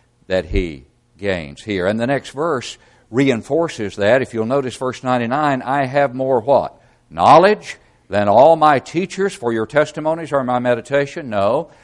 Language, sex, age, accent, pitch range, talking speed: English, male, 60-79, American, 115-155 Hz, 155 wpm